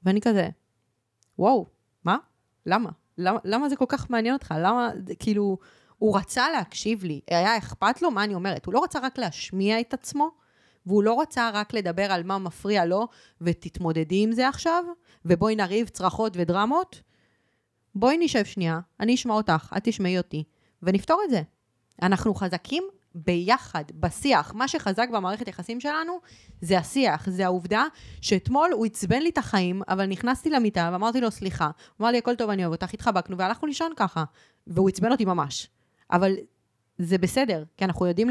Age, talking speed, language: 20-39, 170 wpm, Hebrew